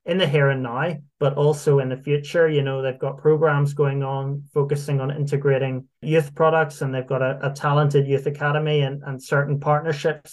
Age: 20-39